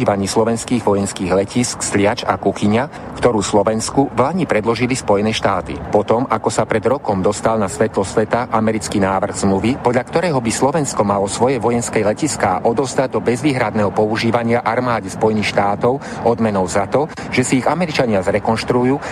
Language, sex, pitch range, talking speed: Slovak, male, 105-125 Hz, 150 wpm